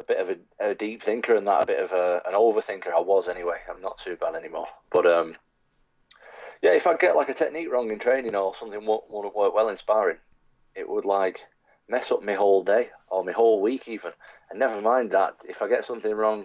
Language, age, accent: English, 30-49, British